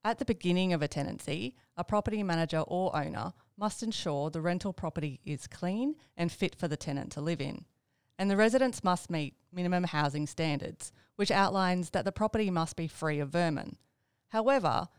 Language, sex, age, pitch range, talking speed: English, female, 30-49, 150-195 Hz, 180 wpm